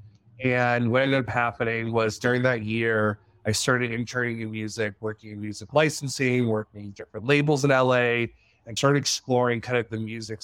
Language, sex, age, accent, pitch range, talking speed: English, male, 30-49, American, 110-130 Hz, 170 wpm